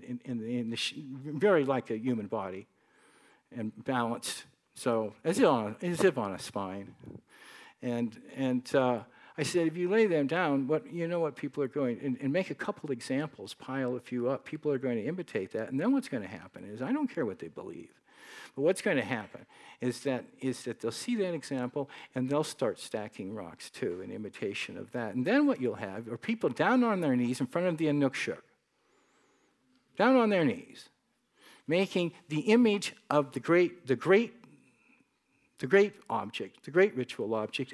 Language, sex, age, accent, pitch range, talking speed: English, male, 50-69, American, 125-190 Hz, 200 wpm